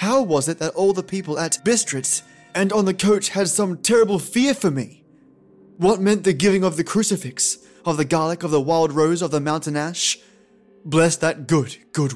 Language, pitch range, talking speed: English, 140-180 Hz, 200 wpm